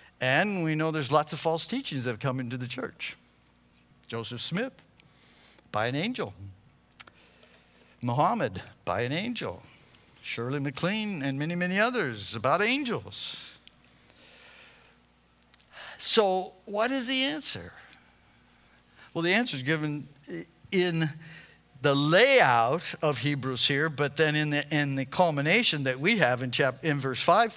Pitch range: 140-220 Hz